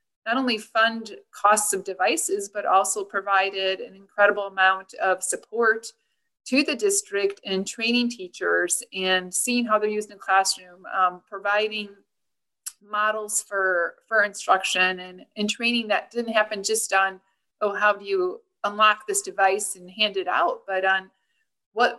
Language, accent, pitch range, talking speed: English, American, 190-220 Hz, 150 wpm